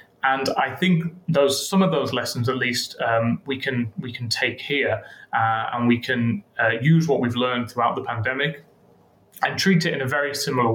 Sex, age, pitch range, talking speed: male, 30-49, 120-155 Hz, 200 wpm